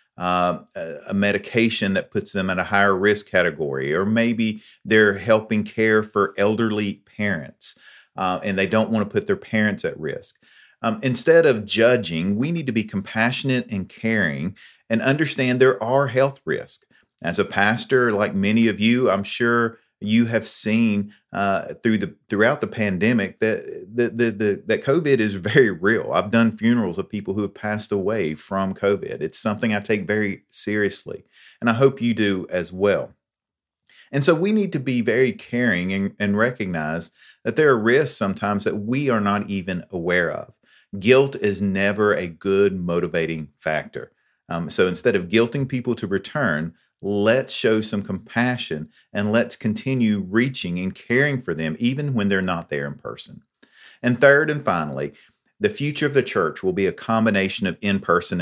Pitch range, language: 100-120 Hz, English